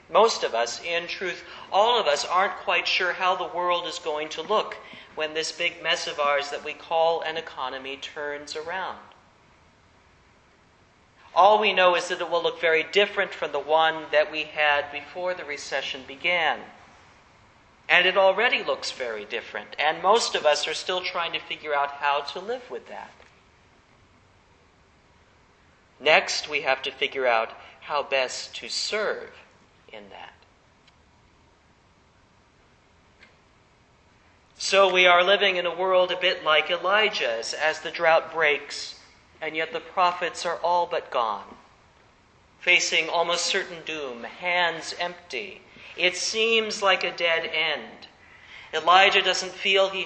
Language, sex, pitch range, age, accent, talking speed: English, male, 150-185 Hz, 40-59, American, 145 wpm